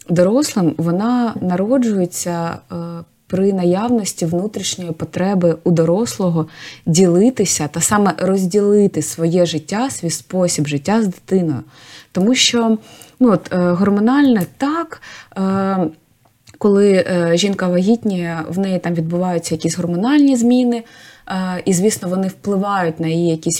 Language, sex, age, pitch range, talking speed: Ukrainian, female, 20-39, 170-220 Hz, 120 wpm